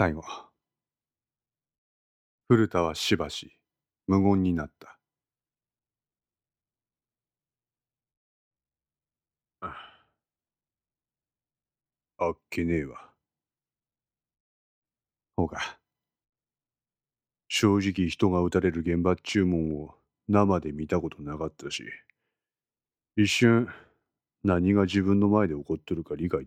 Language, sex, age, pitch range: Japanese, male, 40-59, 80-100 Hz